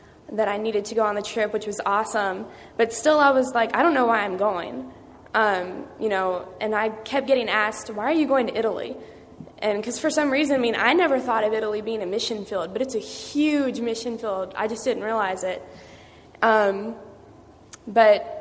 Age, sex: 10-29, female